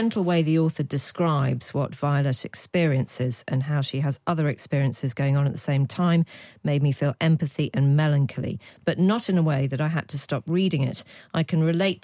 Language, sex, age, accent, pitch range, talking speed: English, female, 40-59, British, 135-160 Hz, 210 wpm